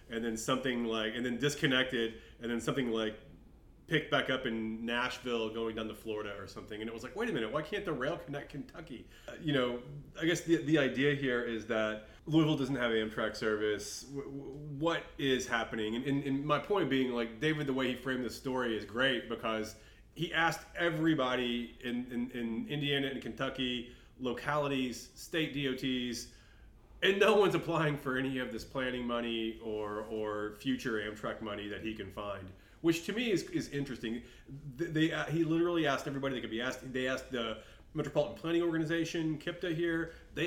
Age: 30-49